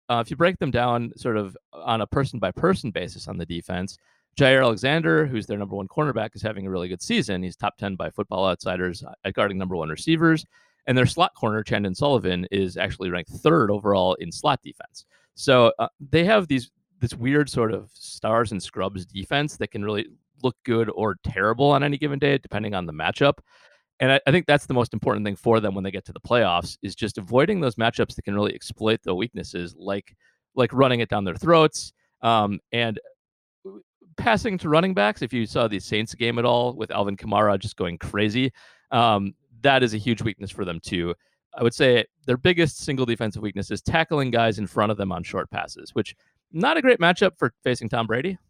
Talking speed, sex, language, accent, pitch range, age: 210 wpm, male, English, American, 100-135 Hz, 30-49